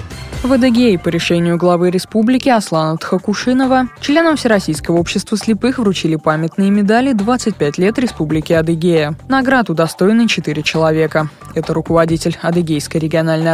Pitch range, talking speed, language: 165-235 Hz, 120 wpm, Russian